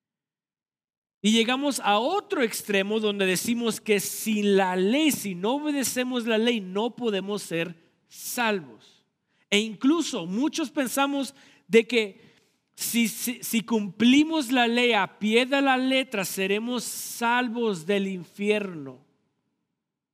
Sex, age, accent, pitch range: male, 50-69, Mexican, 160-230 Hz